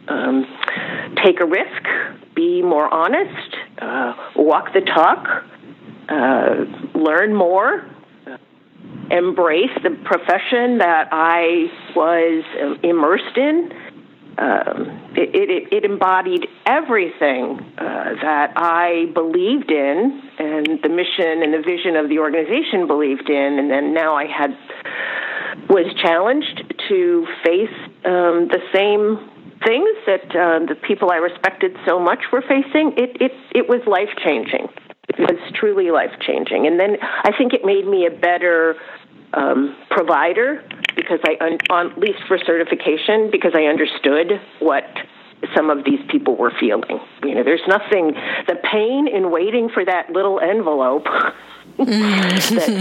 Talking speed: 135 wpm